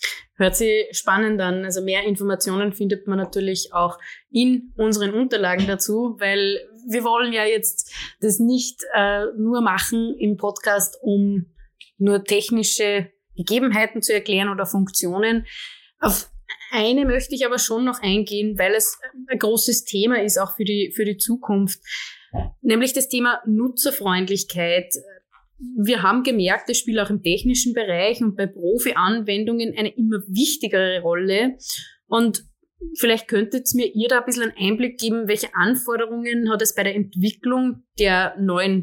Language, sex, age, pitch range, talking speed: German, female, 20-39, 195-235 Hz, 150 wpm